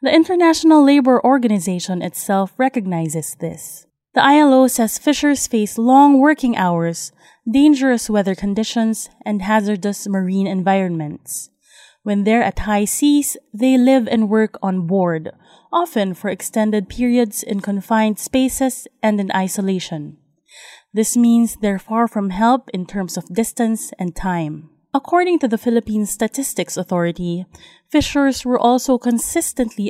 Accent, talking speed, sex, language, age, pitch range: Filipino, 130 wpm, female, English, 20-39, 190-255 Hz